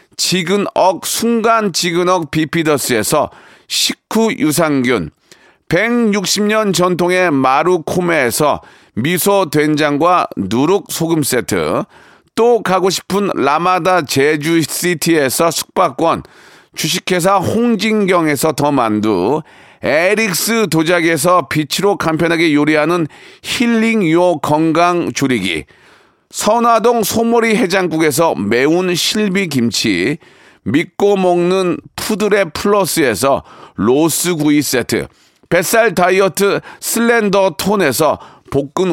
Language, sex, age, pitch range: Korean, male, 40-59, 160-205 Hz